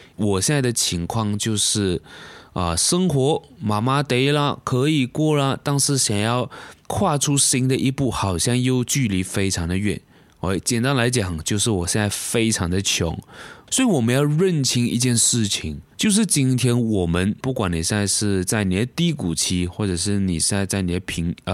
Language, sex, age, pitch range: Chinese, male, 20-39, 95-135 Hz